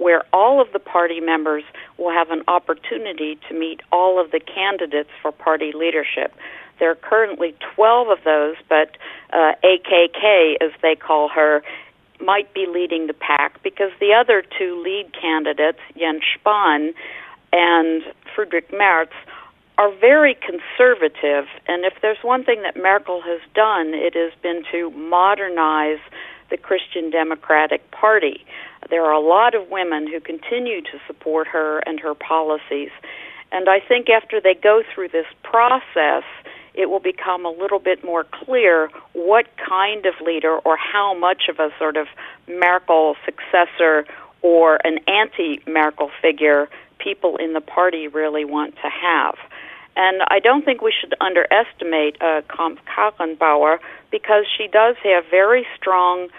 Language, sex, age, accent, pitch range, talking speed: English, female, 50-69, American, 155-200 Hz, 150 wpm